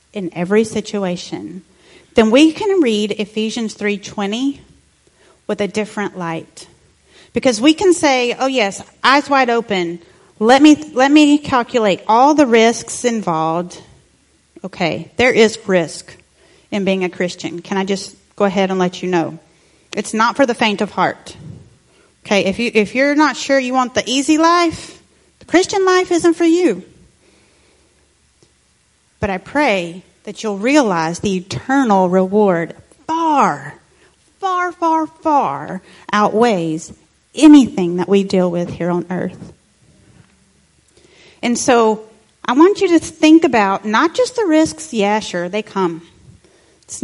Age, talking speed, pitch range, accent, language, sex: 40-59, 145 wpm, 190-275 Hz, American, English, female